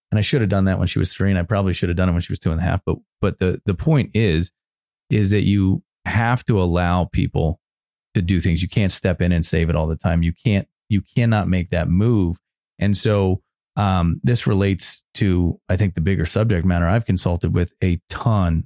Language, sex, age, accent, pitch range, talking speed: English, male, 30-49, American, 85-105 Hz, 240 wpm